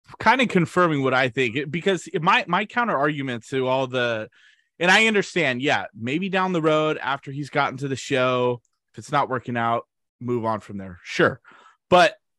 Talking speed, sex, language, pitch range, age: 190 wpm, male, English, 130-185 Hz, 20-39